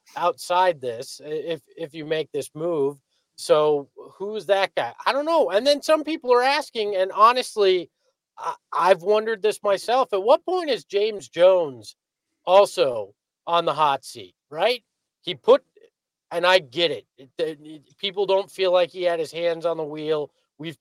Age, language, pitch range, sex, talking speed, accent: 40-59, English, 170-240 Hz, male, 175 wpm, American